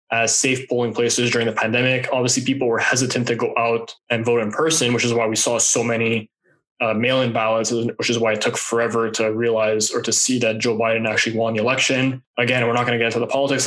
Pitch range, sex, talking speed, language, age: 115-130 Hz, male, 240 wpm, English, 20-39